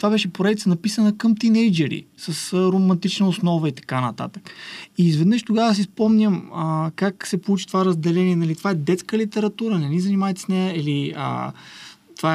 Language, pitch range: Bulgarian, 150-190 Hz